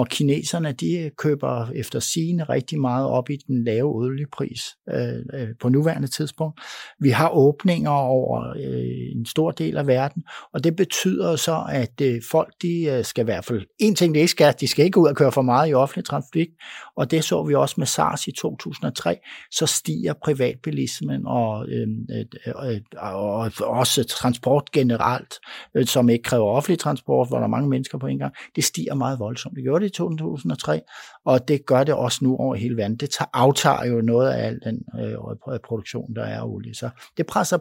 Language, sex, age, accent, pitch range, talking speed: Danish, male, 60-79, native, 120-150 Hz, 200 wpm